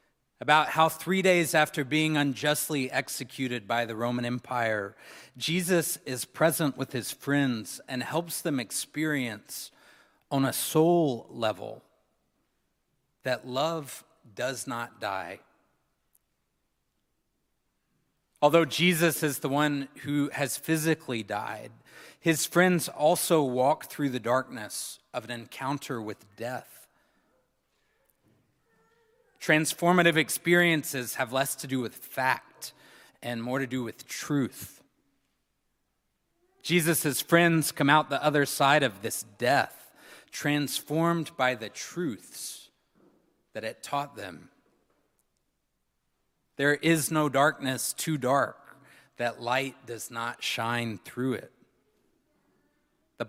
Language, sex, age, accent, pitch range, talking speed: English, male, 30-49, American, 125-160 Hz, 110 wpm